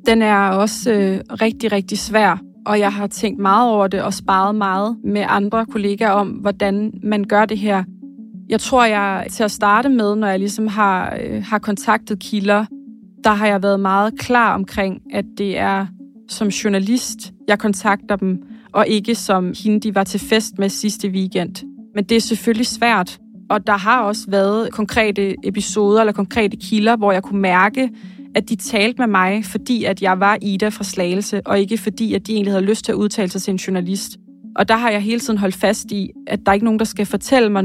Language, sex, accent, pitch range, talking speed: Danish, female, native, 195-220 Hz, 210 wpm